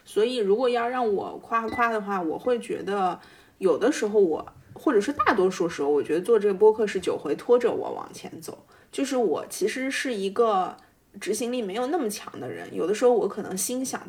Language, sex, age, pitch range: Chinese, female, 20-39, 195-285 Hz